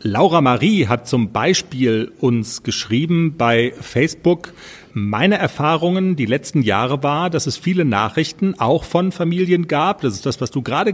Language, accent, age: German, German, 40-59